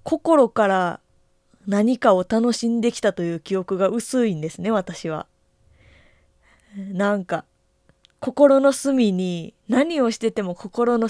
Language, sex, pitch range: Japanese, female, 170-230 Hz